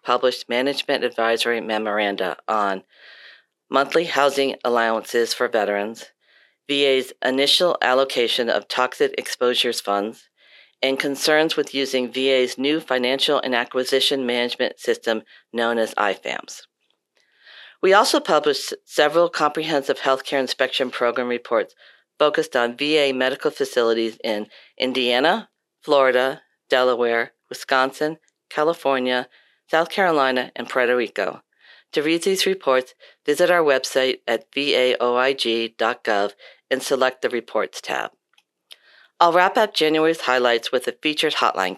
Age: 40-59